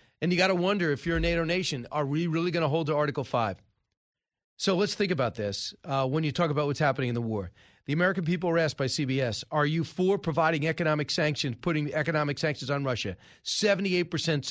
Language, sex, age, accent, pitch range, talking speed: English, male, 40-59, American, 145-185 Hz, 220 wpm